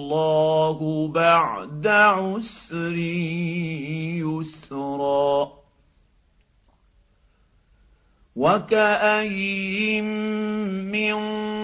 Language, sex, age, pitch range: Arabic, male, 50-69, 150-190 Hz